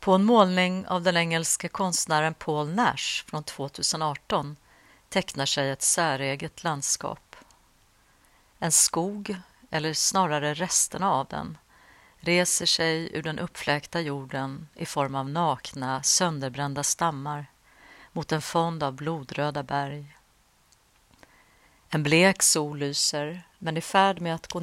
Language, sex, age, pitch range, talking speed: Swedish, female, 50-69, 150-180 Hz, 125 wpm